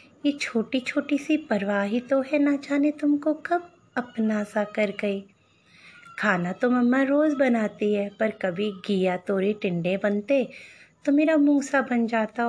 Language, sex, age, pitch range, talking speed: Hindi, female, 30-49, 215-275 Hz, 160 wpm